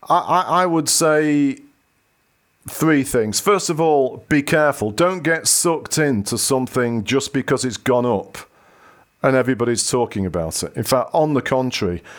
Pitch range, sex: 125-155 Hz, male